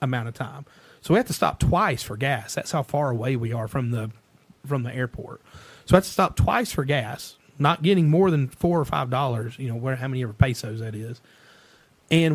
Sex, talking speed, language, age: male, 230 wpm, English, 30-49